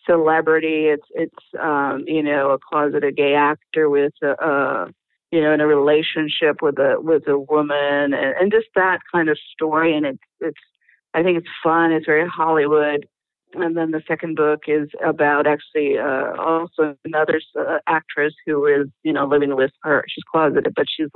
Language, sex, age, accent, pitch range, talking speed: English, female, 50-69, American, 150-175 Hz, 180 wpm